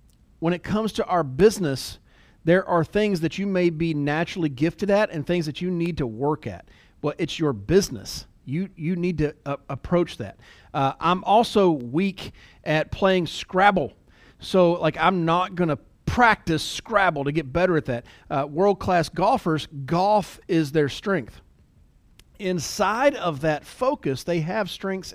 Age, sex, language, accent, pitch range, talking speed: 40-59, male, English, American, 135-205 Hz, 165 wpm